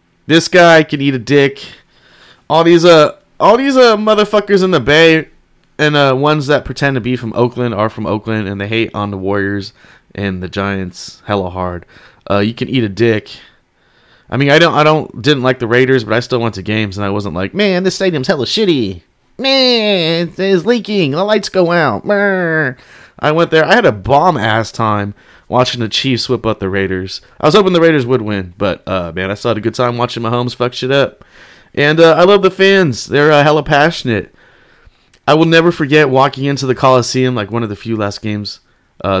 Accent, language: American, English